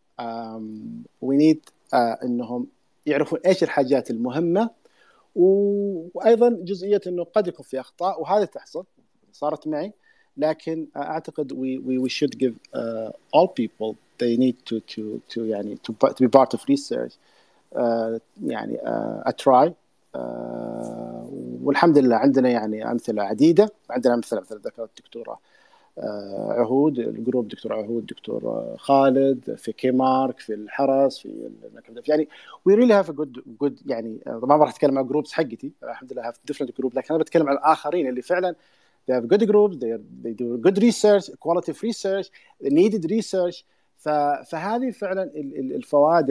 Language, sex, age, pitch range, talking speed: Arabic, male, 40-59, 120-180 Hz, 150 wpm